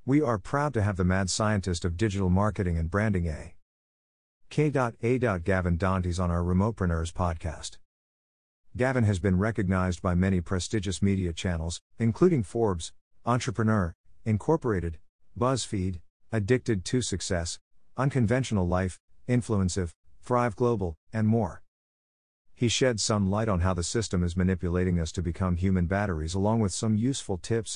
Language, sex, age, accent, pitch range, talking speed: English, male, 50-69, American, 85-110 Hz, 145 wpm